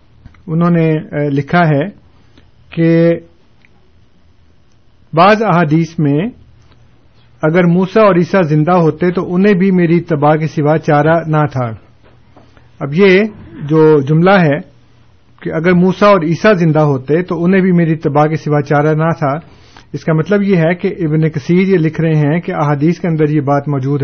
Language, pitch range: Urdu, 140-175 Hz